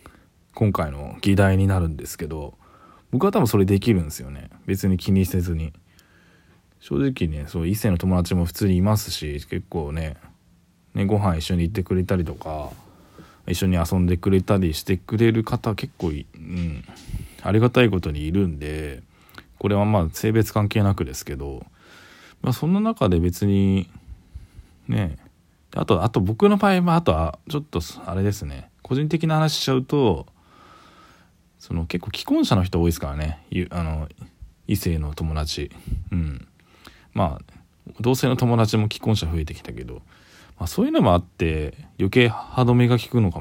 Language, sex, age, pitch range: Japanese, male, 20-39, 85-110 Hz